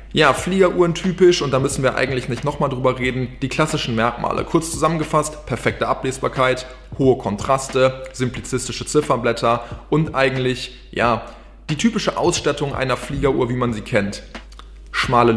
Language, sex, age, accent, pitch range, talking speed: German, male, 20-39, German, 125-155 Hz, 140 wpm